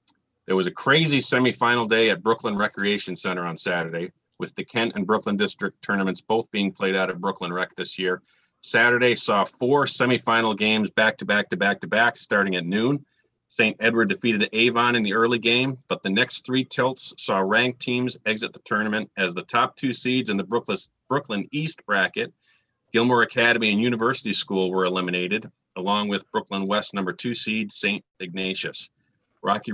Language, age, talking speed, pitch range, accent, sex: English, 40-59, 180 wpm, 95-120 Hz, American, male